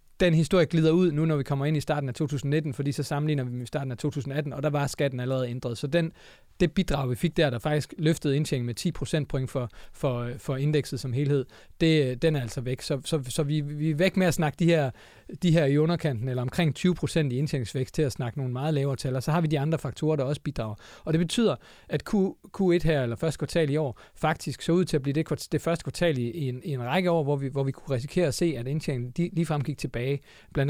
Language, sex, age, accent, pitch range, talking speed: Danish, male, 30-49, native, 130-165 Hz, 260 wpm